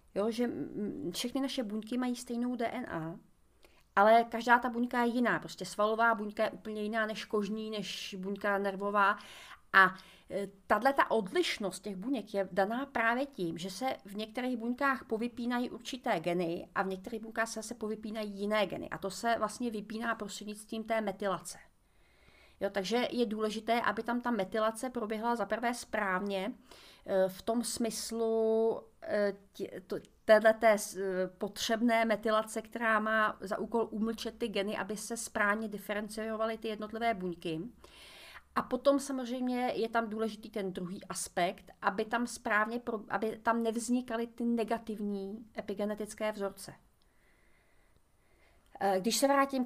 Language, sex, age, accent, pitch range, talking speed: Czech, female, 40-59, native, 200-235 Hz, 140 wpm